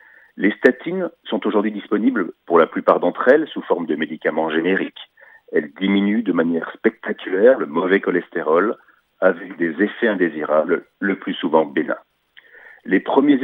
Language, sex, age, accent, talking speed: French, male, 50-69, French, 145 wpm